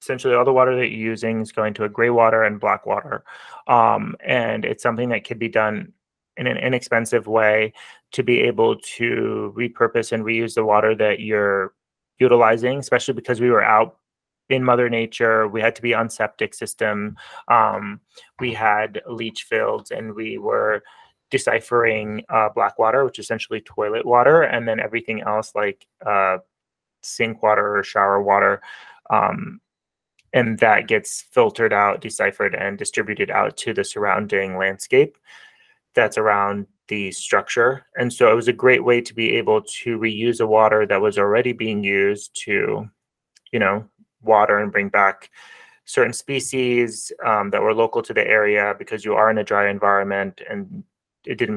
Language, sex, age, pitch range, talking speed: English, male, 20-39, 105-130 Hz, 170 wpm